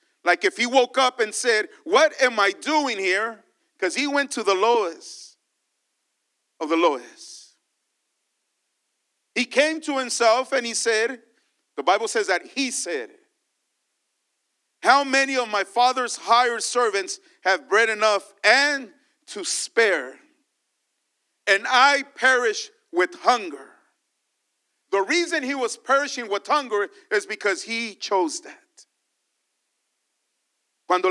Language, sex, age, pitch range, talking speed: English, male, 40-59, 225-320 Hz, 125 wpm